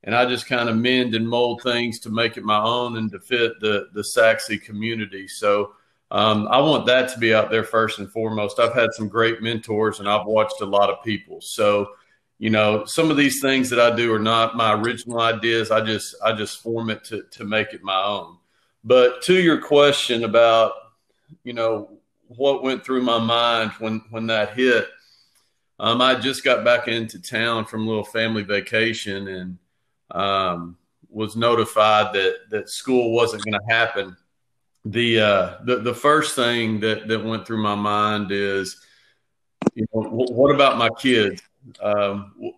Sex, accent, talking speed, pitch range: male, American, 185 wpm, 105-120 Hz